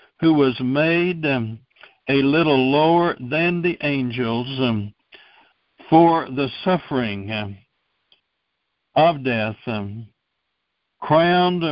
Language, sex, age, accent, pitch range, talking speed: Spanish, male, 60-79, American, 115-155 Hz, 95 wpm